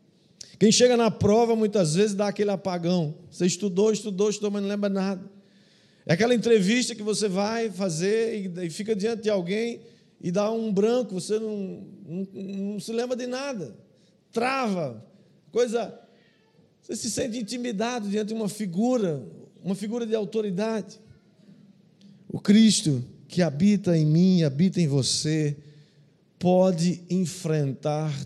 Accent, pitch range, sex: Brazilian, 150-205 Hz, male